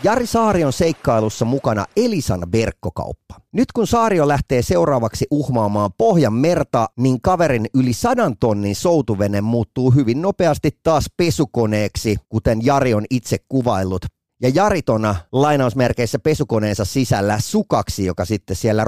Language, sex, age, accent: Finnish, male, 30-49, native